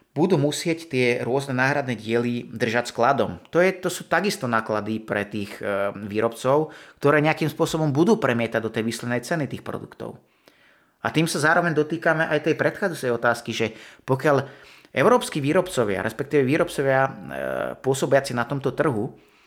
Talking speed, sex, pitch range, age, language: 150 wpm, male, 115-145 Hz, 30-49, Slovak